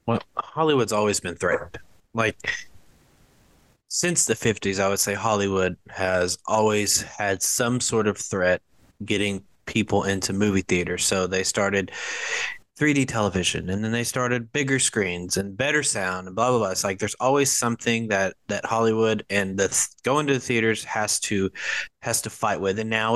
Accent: American